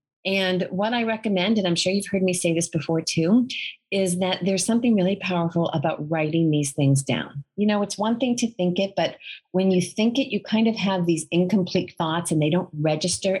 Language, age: English, 40-59